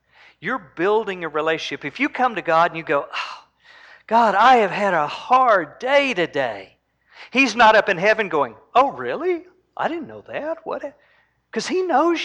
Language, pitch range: English, 155-260 Hz